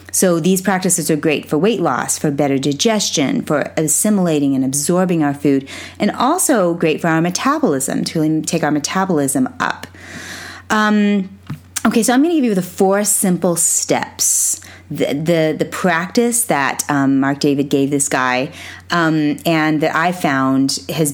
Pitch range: 145-180 Hz